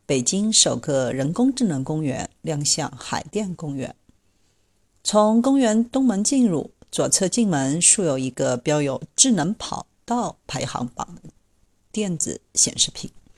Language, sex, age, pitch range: Chinese, female, 40-59, 140-220 Hz